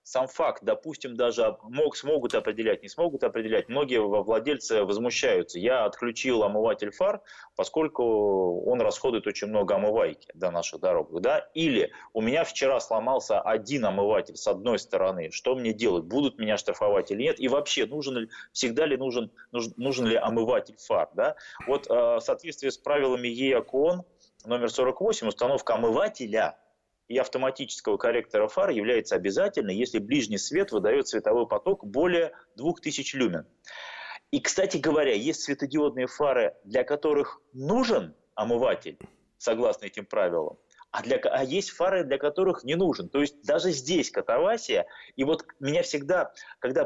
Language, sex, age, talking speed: Russian, male, 30-49, 140 wpm